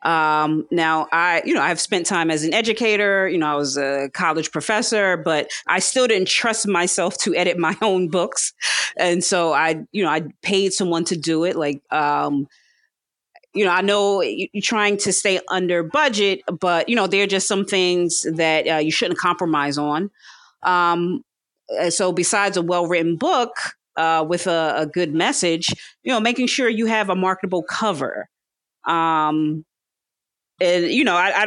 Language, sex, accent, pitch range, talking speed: English, female, American, 165-195 Hz, 180 wpm